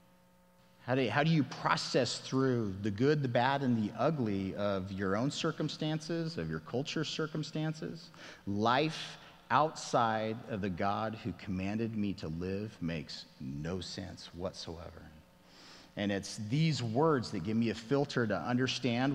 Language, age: English, 40-59